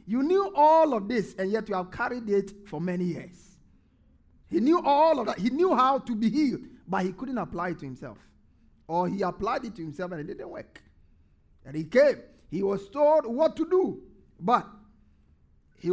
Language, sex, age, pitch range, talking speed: English, male, 50-69, 185-265 Hz, 200 wpm